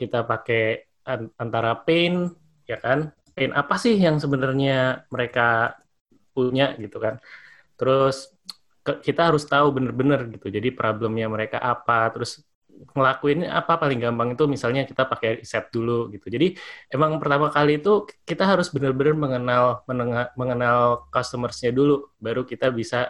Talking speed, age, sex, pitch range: 140 wpm, 20-39, male, 115-140 Hz